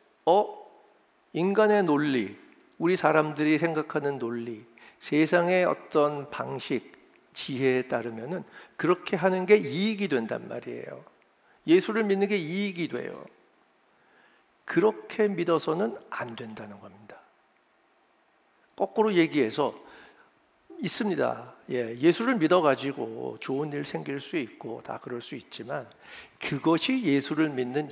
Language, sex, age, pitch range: Korean, male, 50-69, 130-185 Hz